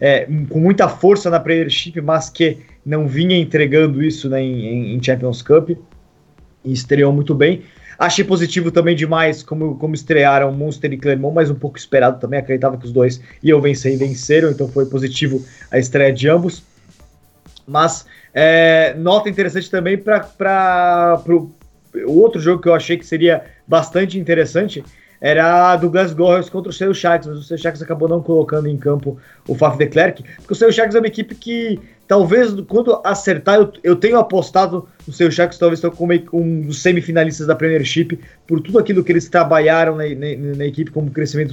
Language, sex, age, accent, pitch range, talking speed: Portuguese, male, 20-39, Brazilian, 145-175 Hz, 175 wpm